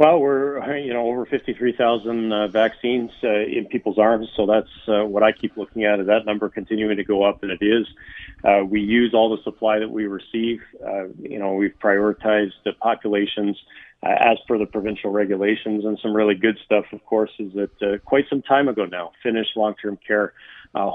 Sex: male